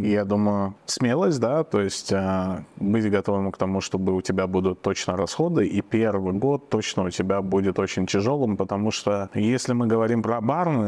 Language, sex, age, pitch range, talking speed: Russian, male, 20-39, 100-115 Hz, 180 wpm